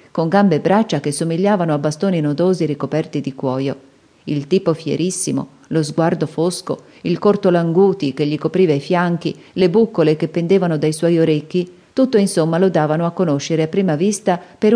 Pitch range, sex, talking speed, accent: 150-195 Hz, female, 175 wpm, native